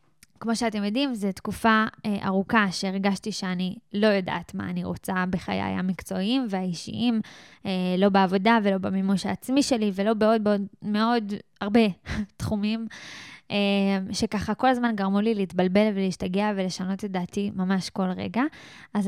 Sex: female